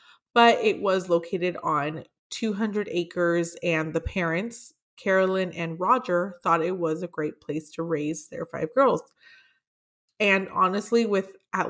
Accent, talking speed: American, 145 wpm